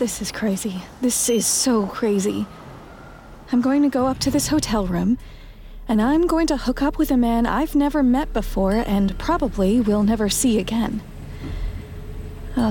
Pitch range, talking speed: 200-260 Hz, 170 wpm